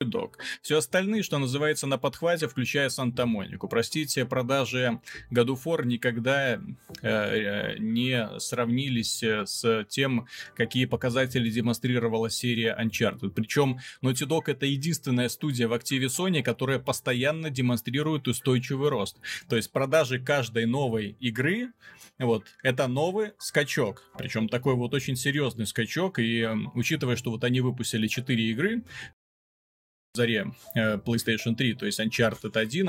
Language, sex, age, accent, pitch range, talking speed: Russian, male, 30-49, native, 115-145 Hz, 125 wpm